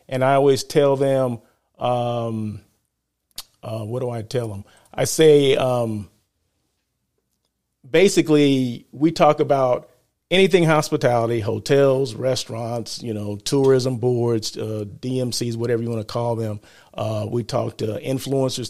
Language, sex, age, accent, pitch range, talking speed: English, male, 40-59, American, 115-150 Hz, 130 wpm